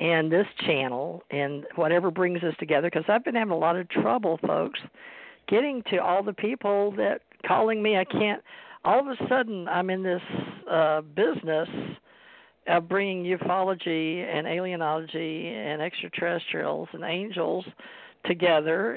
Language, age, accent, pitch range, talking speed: English, 50-69, American, 165-215 Hz, 145 wpm